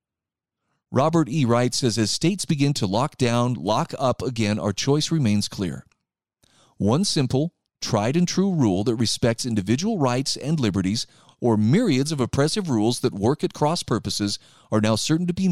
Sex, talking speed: male, 160 wpm